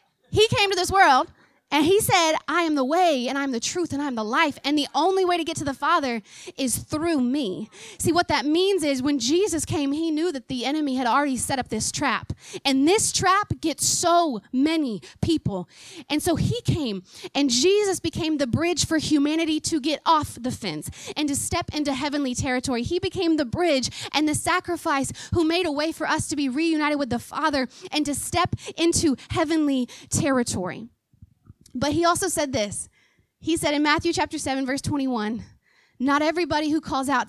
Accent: American